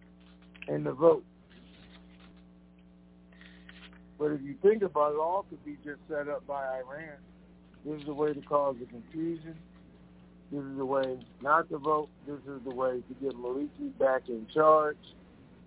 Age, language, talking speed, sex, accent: 50-69, English, 165 wpm, male, American